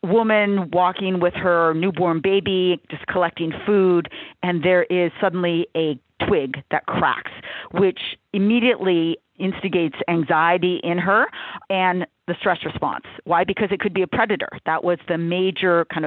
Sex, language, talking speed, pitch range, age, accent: female, English, 145 wpm, 175-220 Hz, 40-59, American